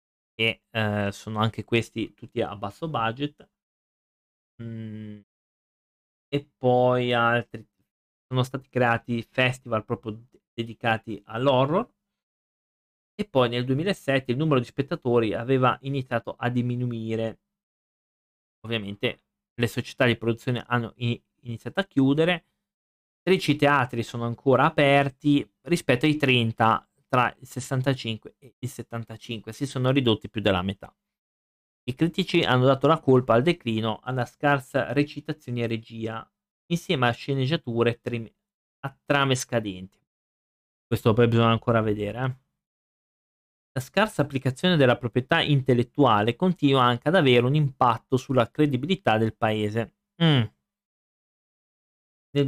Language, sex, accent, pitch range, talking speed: Italian, male, native, 115-145 Hz, 120 wpm